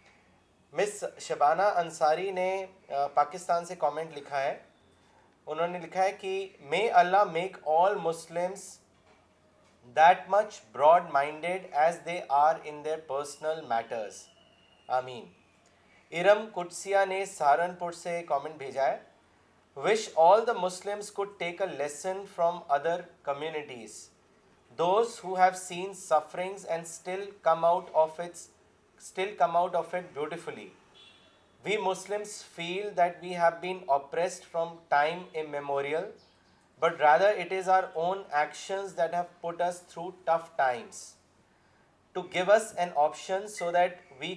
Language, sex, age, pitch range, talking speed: Urdu, male, 30-49, 155-185 Hz, 130 wpm